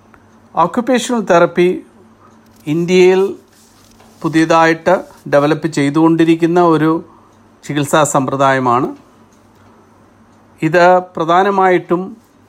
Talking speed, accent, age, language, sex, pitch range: 55 wpm, native, 50-69, Malayalam, male, 135-165 Hz